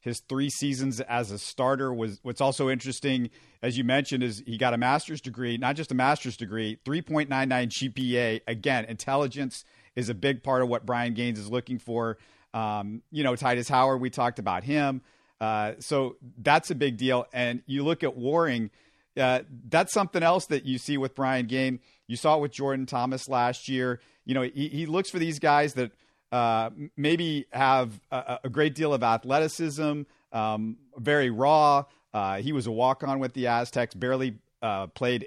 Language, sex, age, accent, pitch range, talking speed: English, male, 40-59, American, 120-140 Hz, 185 wpm